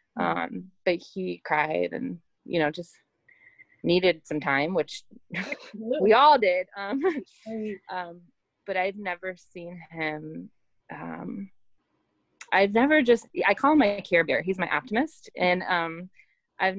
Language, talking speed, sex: English, 140 wpm, female